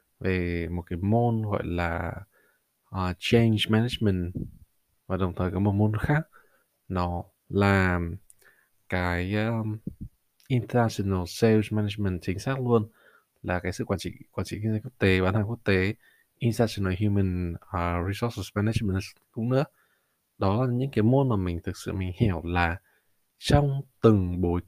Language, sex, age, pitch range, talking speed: Vietnamese, male, 20-39, 90-125 Hz, 155 wpm